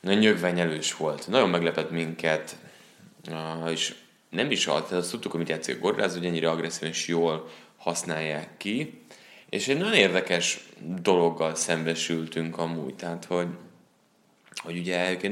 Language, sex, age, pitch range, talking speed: Hungarian, male, 20-39, 80-95 Hz, 155 wpm